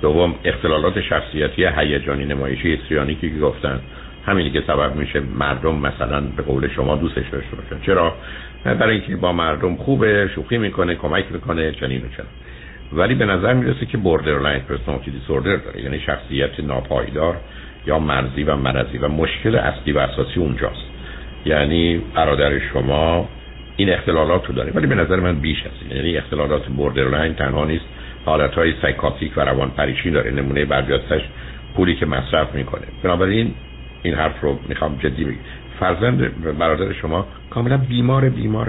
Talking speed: 155 wpm